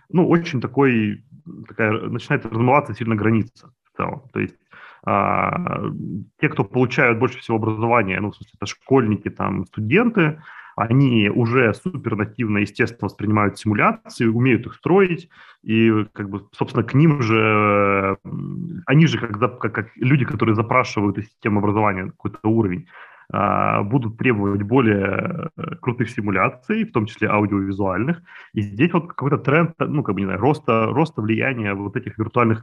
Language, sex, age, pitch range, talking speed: Russian, male, 30-49, 105-140 Hz, 145 wpm